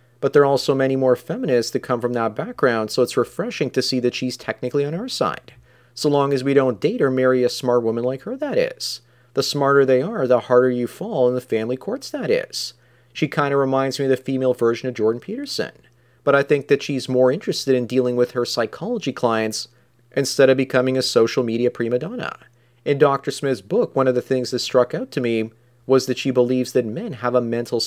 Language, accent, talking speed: English, American, 230 wpm